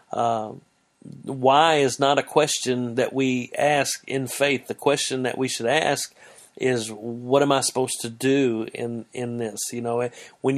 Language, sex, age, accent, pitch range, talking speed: English, male, 40-59, American, 130-150 Hz, 170 wpm